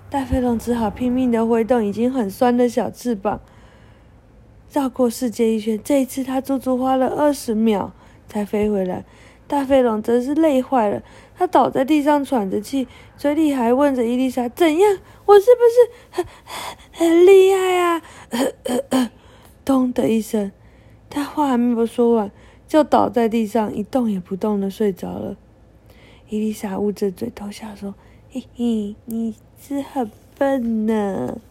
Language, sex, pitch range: Chinese, female, 205-275 Hz